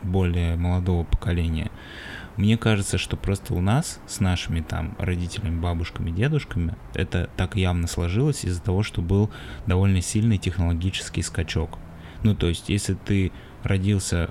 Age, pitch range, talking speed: 20-39, 90-105 Hz, 140 wpm